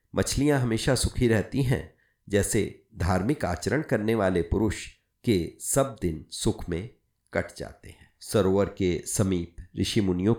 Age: 50-69